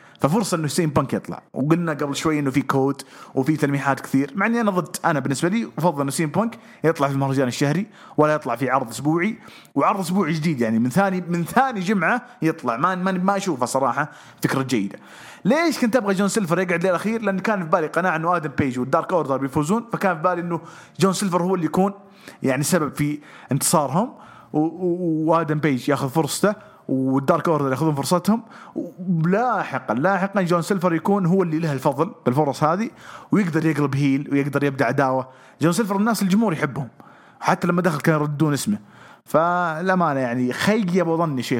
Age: 30-49